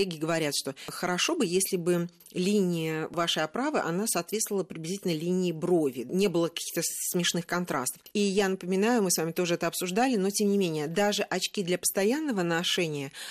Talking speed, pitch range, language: 165 wpm, 170-215 Hz, Russian